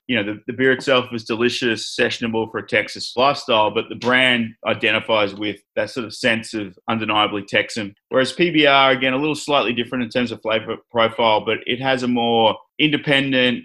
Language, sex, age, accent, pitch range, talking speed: English, male, 20-39, Australian, 110-130 Hz, 190 wpm